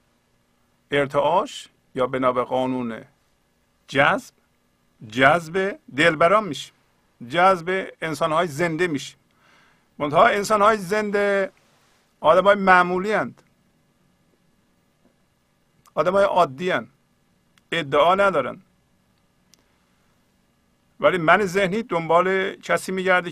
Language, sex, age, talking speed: Persian, male, 50-69, 70 wpm